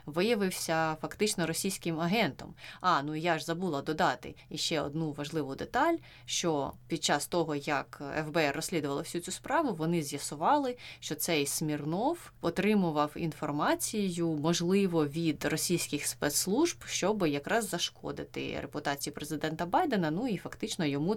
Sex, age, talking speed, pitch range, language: female, 20-39, 130 wpm, 150-190 Hz, Ukrainian